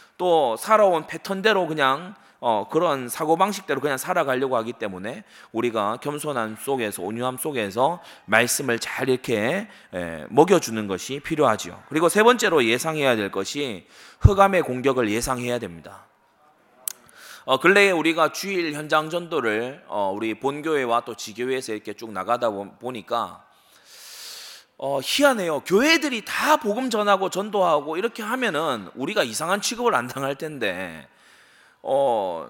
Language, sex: Korean, male